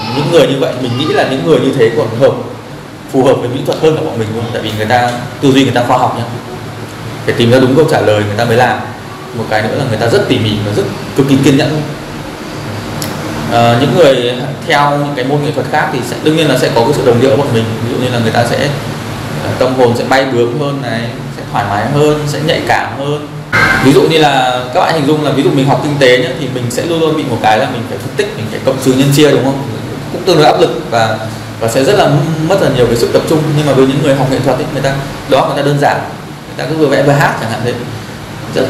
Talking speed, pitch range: 290 wpm, 120-150 Hz